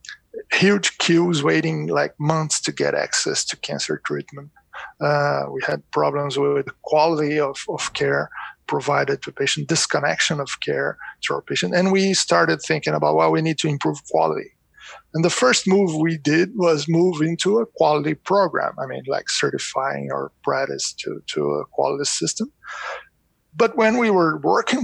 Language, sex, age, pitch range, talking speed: English, male, 50-69, 130-170 Hz, 165 wpm